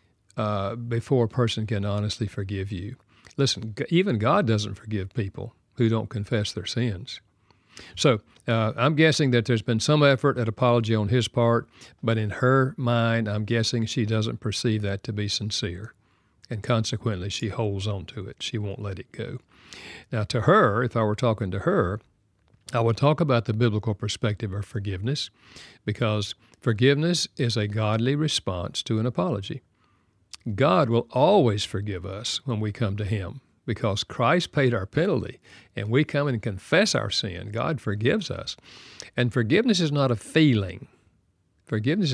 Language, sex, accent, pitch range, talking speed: English, male, American, 105-125 Hz, 165 wpm